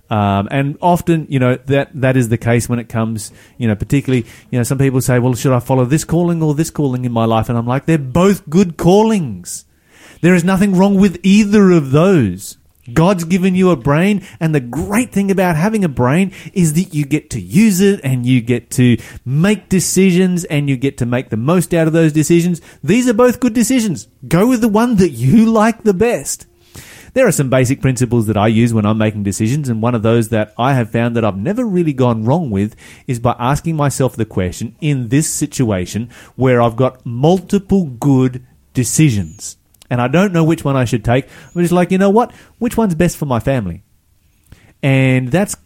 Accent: Australian